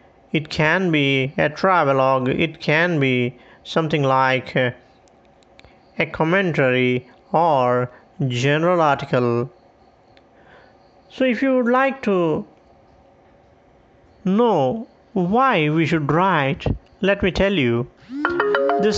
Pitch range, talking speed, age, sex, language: 140-190 Hz, 100 wpm, 50-69, male, English